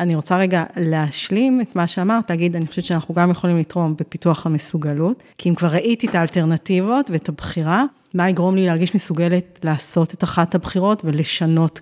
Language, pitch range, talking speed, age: Hebrew, 165-190 Hz, 175 wpm, 30-49